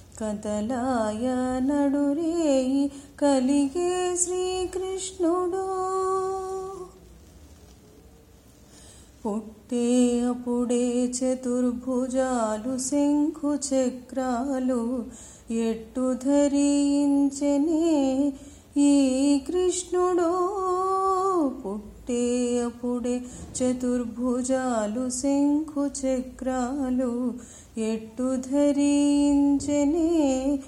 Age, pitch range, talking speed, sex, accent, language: 30-49, 255-370 Hz, 35 wpm, female, native, Telugu